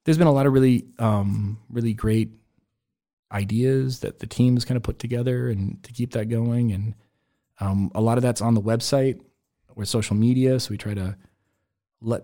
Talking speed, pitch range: 195 wpm, 105-120 Hz